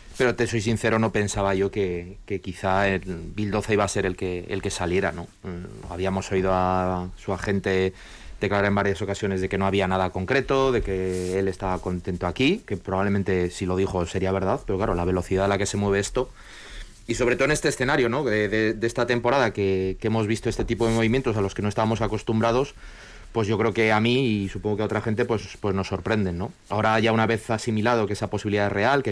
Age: 30-49